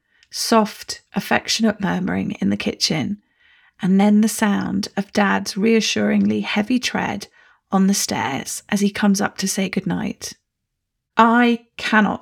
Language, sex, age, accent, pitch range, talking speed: English, female, 40-59, British, 200-225 Hz, 135 wpm